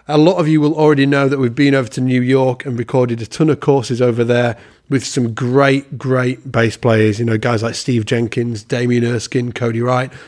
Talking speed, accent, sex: 220 wpm, British, male